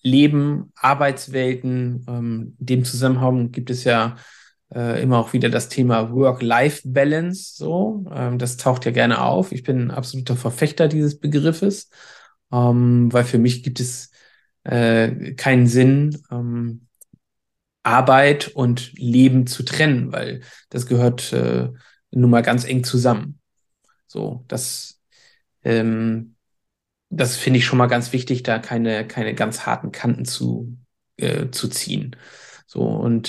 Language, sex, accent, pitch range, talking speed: English, male, German, 120-145 Hz, 135 wpm